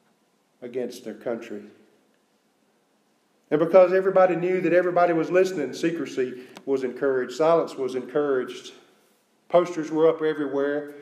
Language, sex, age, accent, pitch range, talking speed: English, male, 40-59, American, 130-165 Hz, 115 wpm